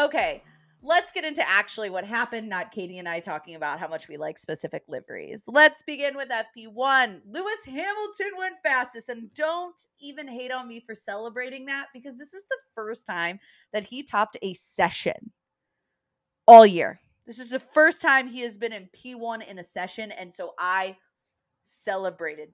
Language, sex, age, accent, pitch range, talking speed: English, female, 20-39, American, 180-260 Hz, 175 wpm